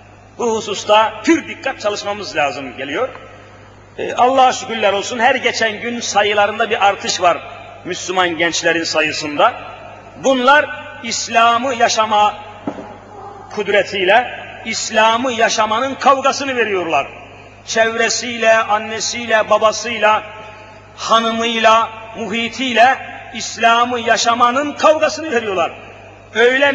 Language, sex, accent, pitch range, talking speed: Turkish, male, native, 215-270 Hz, 85 wpm